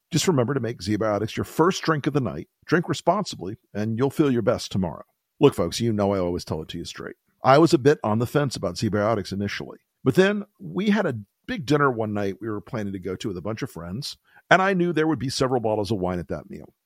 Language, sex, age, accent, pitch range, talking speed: English, male, 50-69, American, 105-155 Hz, 260 wpm